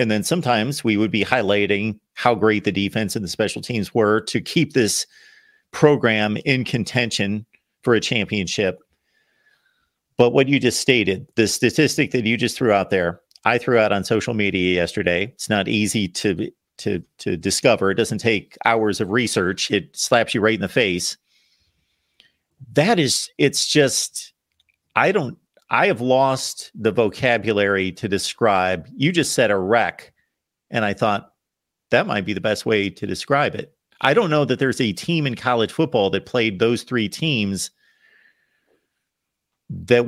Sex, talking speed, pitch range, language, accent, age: male, 165 wpm, 105-140 Hz, English, American, 50-69